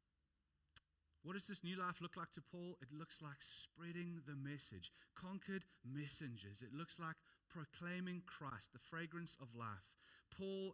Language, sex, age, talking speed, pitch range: English, male, 30-49, 150 wpm, 125-170 Hz